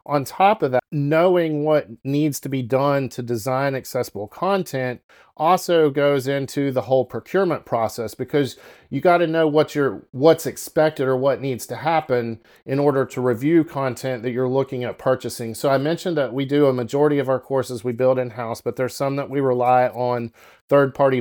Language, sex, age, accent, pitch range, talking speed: English, male, 40-59, American, 125-145 Hz, 185 wpm